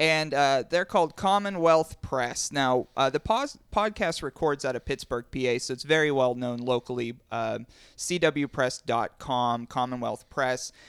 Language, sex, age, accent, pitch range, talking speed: English, male, 30-49, American, 130-165 Hz, 145 wpm